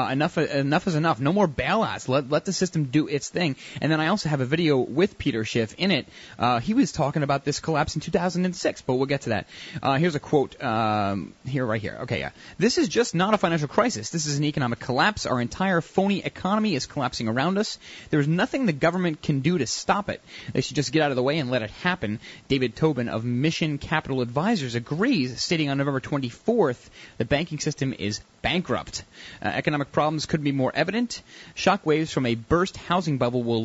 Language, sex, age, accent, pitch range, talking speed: English, male, 30-49, American, 125-165 Hz, 220 wpm